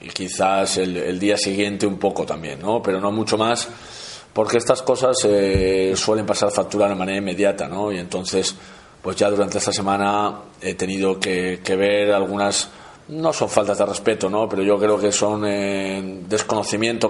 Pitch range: 100-110 Hz